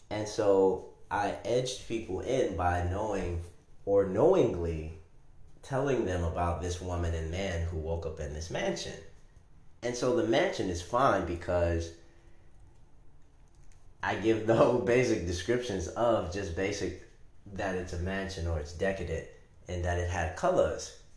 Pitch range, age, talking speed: 85-100 Hz, 30-49, 145 wpm